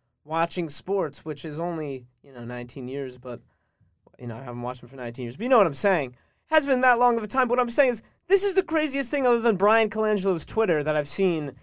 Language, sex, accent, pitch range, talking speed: English, male, American, 145-205 Hz, 260 wpm